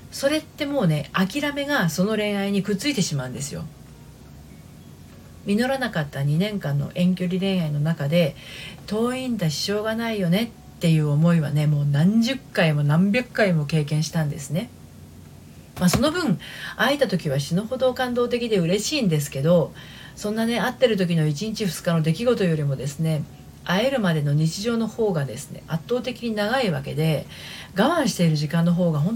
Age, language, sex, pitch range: 40-59, Japanese, female, 155-230 Hz